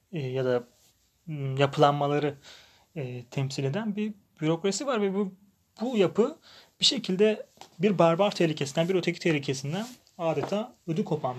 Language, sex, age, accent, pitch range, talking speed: Turkish, male, 30-49, native, 135-190 Hz, 125 wpm